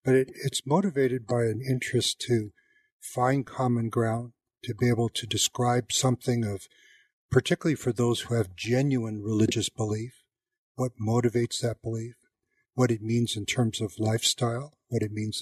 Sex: male